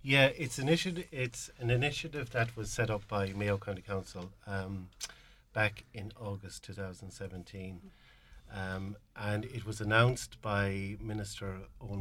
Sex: male